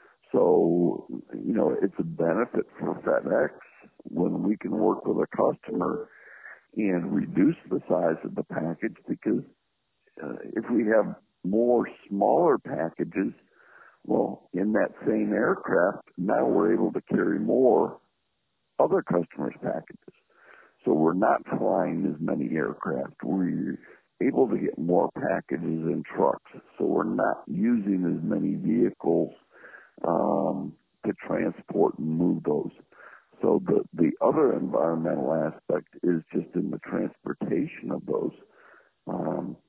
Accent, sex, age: American, male, 60-79